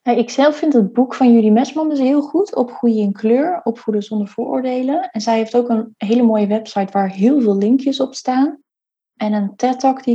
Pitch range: 205-245 Hz